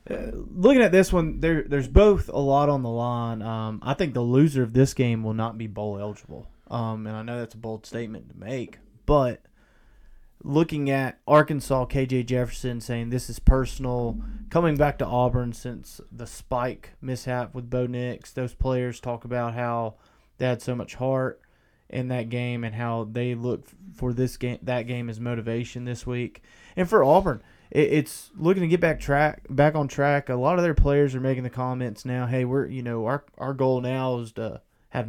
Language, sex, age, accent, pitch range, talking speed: English, male, 20-39, American, 120-150 Hz, 200 wpm